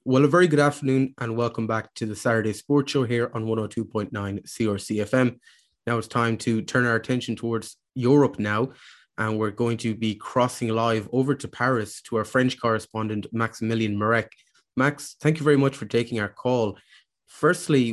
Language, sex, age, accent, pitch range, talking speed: English, male, 20-39, Irish, 105-120 Hz, 175 wpm